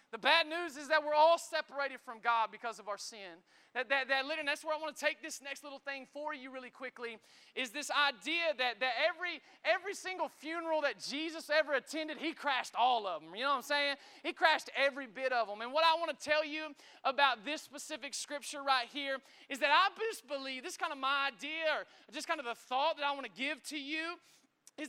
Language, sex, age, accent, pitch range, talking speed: English, male, 30-49, American, 270-325 Hz, 240 wpm